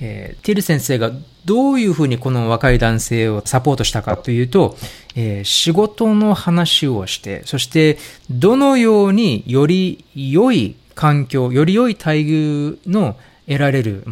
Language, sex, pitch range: Japanese, male, 120-160 Hz